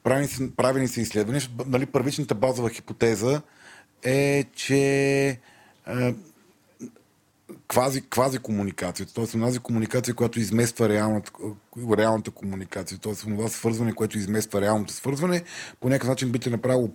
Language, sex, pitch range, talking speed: Bulgarian, male, 110-130 Hz, 120 wpm